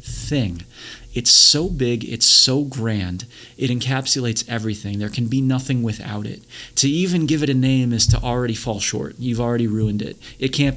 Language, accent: English, American